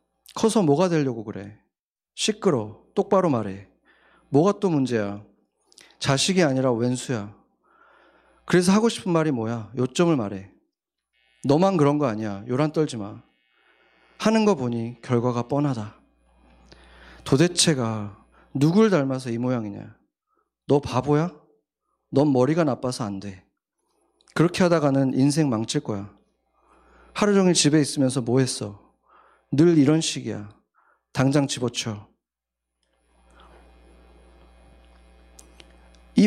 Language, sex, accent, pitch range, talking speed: English, male, Korean, 100-155 Hz, 100 wpm